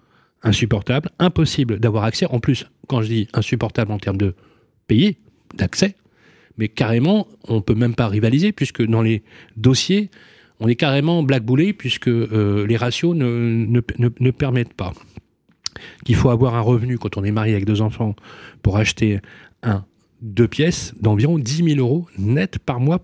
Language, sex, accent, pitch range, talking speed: French, male, French, 110-160 Hz, 170 wpm